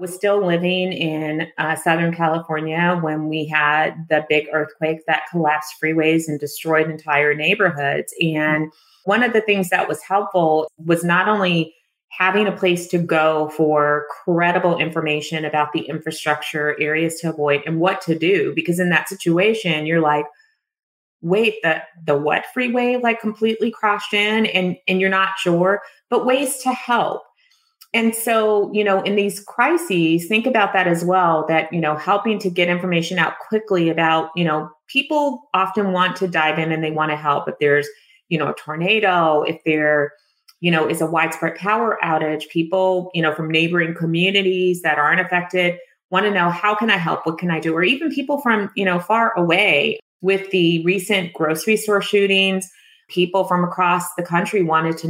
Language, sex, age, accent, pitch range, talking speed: English, female, 30-49, American, 160-200 Hz, 180 wpm